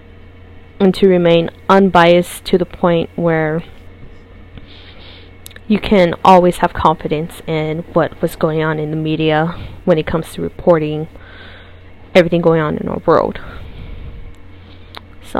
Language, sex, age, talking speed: English, female, 20-39, 130 wpm